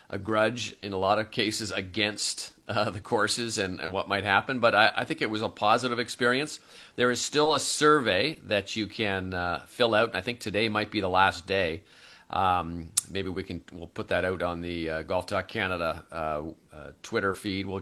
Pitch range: 95-115 Hz